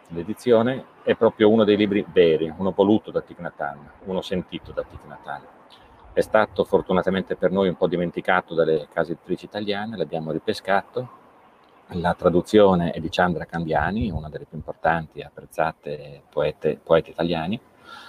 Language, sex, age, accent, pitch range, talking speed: Italian, male, 40-59, native, 80-105 Hz, 145 wpm